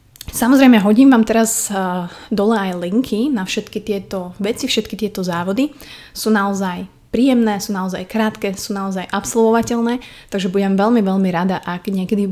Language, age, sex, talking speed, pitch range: Slovak, 20-39, female, 150 wpm, 185-225 Hz